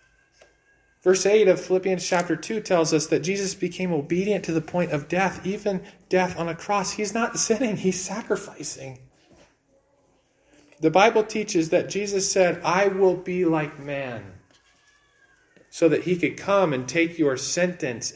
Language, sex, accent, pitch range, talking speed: English, male, American, 155-220 Hz, 155 wpm